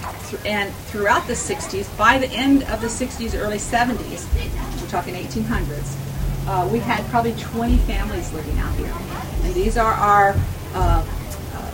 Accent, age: American, 40-59